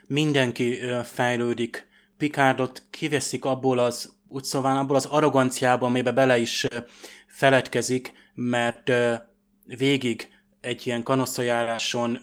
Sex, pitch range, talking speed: male, 125-135 Hz, 100 wpm